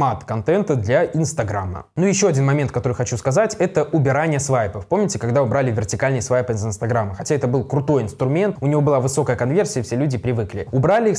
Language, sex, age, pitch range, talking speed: Russian, male, 20-39, 120-155 Hz, 190 wpm